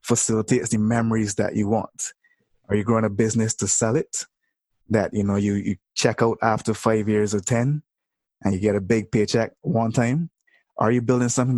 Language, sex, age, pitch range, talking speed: English, male, 20-39, 105-125 Hz, 195 wpm